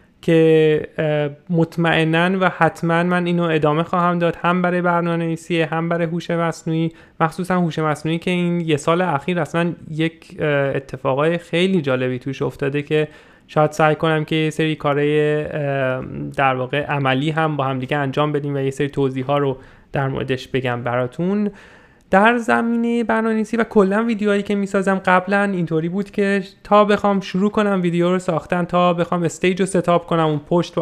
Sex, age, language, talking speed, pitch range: male, 30-49, Persian, 165 wpm, 150-180 Hz